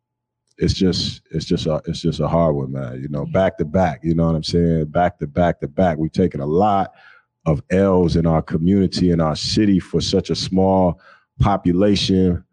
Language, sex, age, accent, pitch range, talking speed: English, male, 30-49, American, 85-100 Hz, 205 wpm